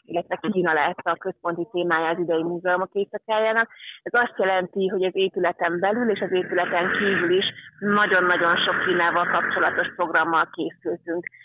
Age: 30-49